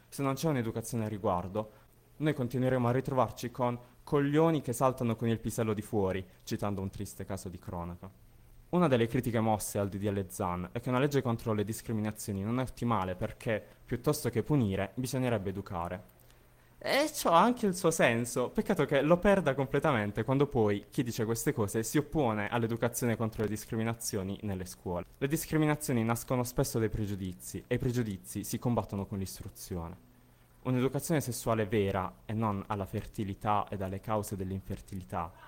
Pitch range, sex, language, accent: 100-125 Hz, male, Italian, native